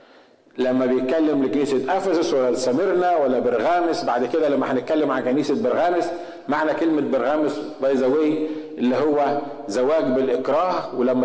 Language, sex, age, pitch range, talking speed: Arabic, male, 50-69, 140-185 Hz, 130 wpm